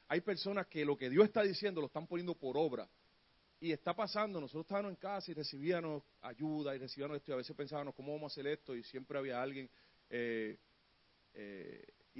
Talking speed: 200 wpm